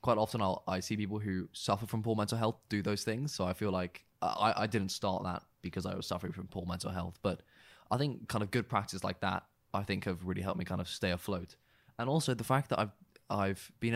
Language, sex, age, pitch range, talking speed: English, male, 20-39, 95-110 Hz, 255 wpm